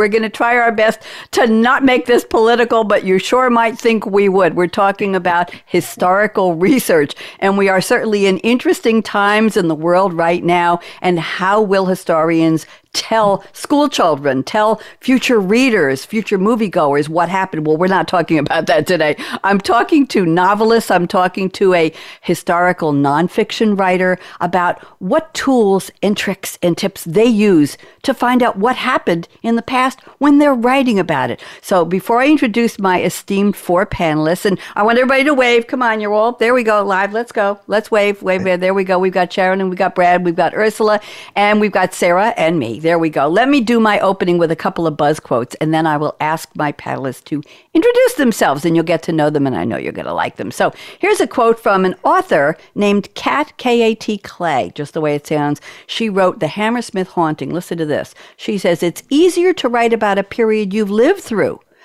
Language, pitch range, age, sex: English, 175-230 Hz, 60-79, female